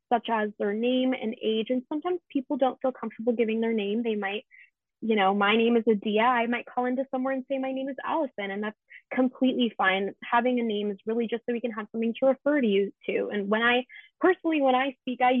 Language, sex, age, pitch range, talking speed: English, female, 20-39, 210-250 Hz, 240 wpm